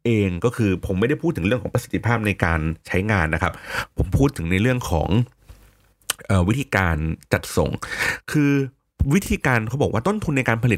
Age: 30-49